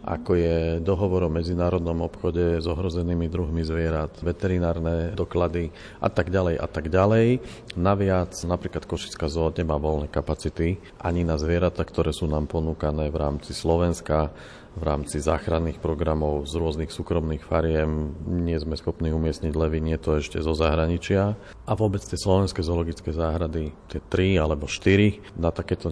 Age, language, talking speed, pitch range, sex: 40-59, Slovak, 150 wpm, 80-90 Hz, male